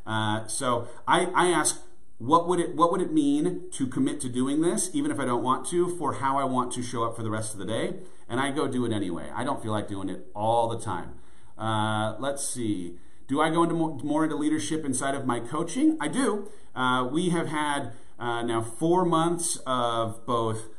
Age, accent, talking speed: 40-59, American, 225 wpm